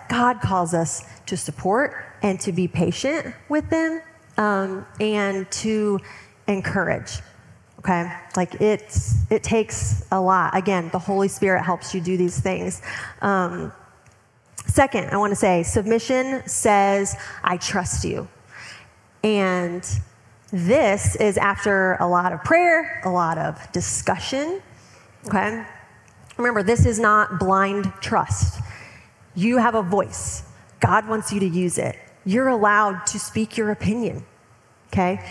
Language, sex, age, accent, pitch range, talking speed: English, female, 30-49, American, 185-235 Hz, 130 wpm